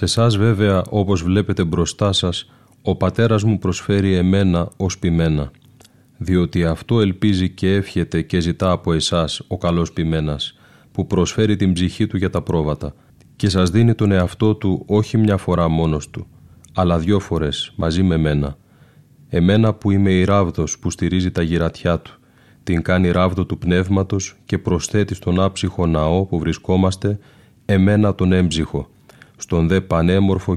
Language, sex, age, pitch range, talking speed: Greek, male, 30-49, 85-100 Hz, 155 wpm